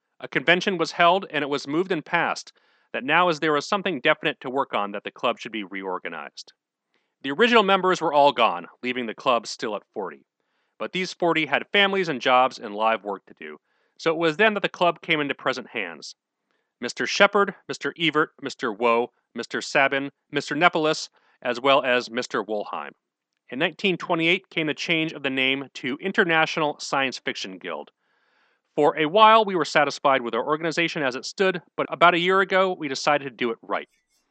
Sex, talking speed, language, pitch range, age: male, 195 wpm, English, 135-175 Hz, 40-59